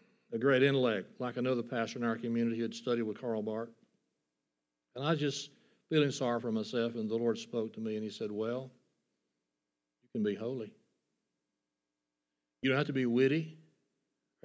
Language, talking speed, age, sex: English, 185 wpm, 60-79, male